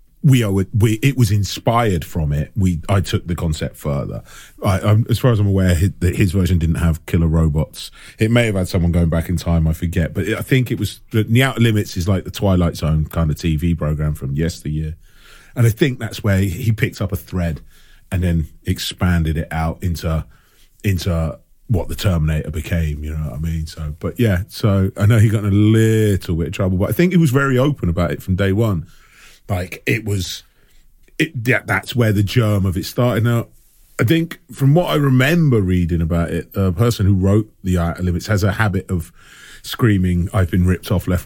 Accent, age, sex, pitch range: British, 30-49, male, 85-115 Hz